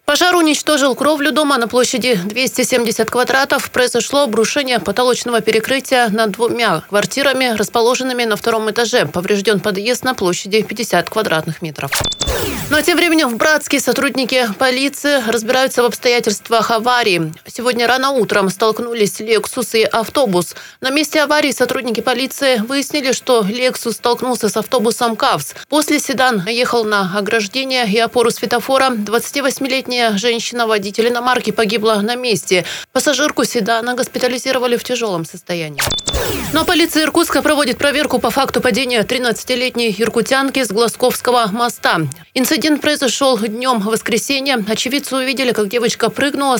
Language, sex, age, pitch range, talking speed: Russian, female, 30-49, 220-260 Hz, 125 wpm